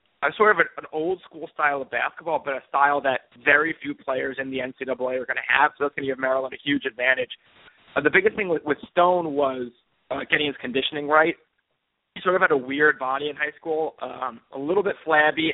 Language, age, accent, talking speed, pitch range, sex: English, 30-49, American, 225 wpm, 130-160 Hz, male